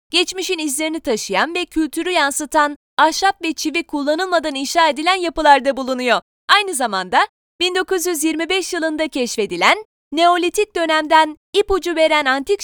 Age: 20-39